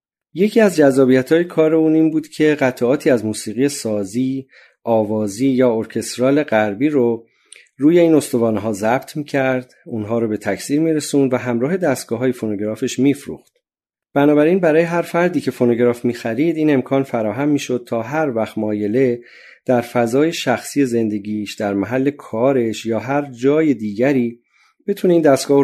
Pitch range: 110-145 Hz